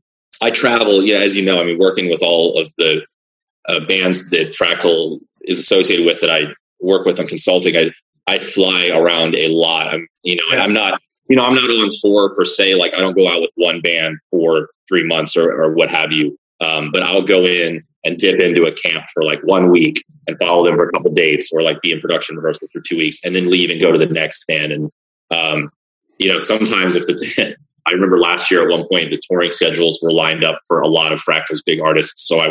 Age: 30-49